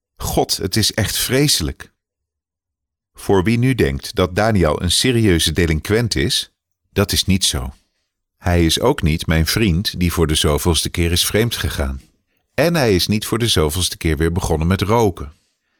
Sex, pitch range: male, 80-105 Hz